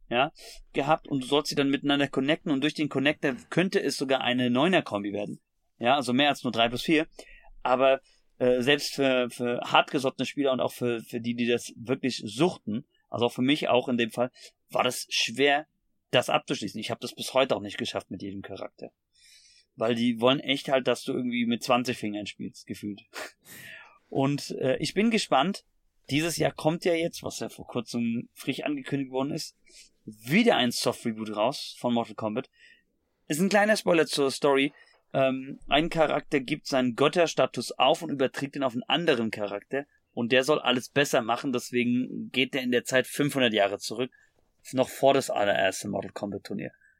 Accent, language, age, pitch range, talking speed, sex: German, German, 30-49, 120-150 Hz, 185 wpm, male